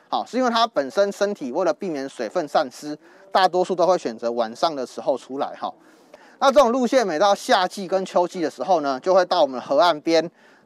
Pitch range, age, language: 150-225 Hz, 20-39, Chinese